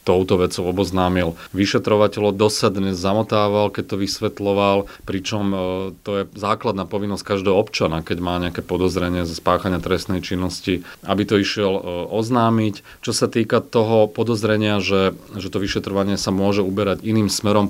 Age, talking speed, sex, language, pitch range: 30-49, 150 wpm, male, Slovak, 95-105 Hz